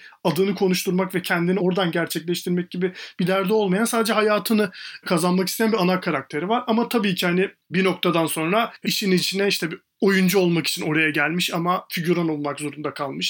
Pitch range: 170-205 Hz